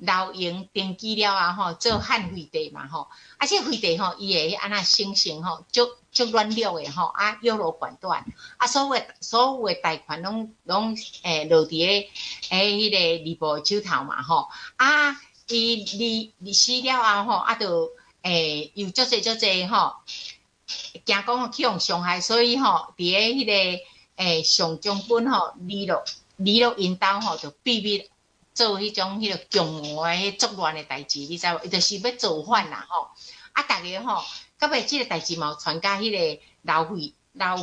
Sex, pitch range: female, 170-230 Hz